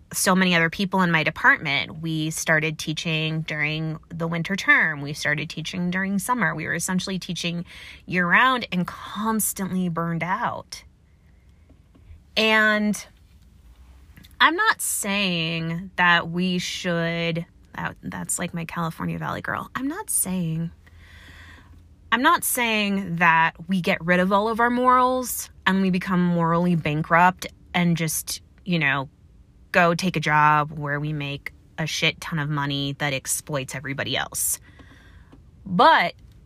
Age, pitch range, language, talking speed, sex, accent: 20-39, 150-190 Hz, English, 135 wpm, female, American